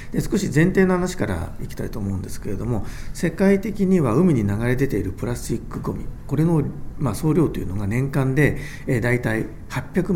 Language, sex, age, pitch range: Japanese, male, 40-59, 105-165 Hz